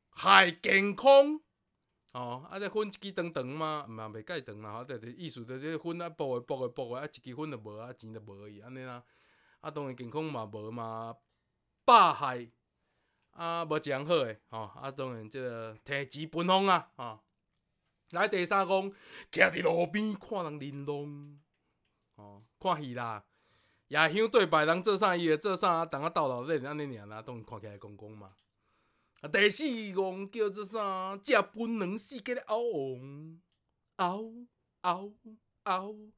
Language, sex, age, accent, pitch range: Chinese, male, 20-39, native, 120-185 Hz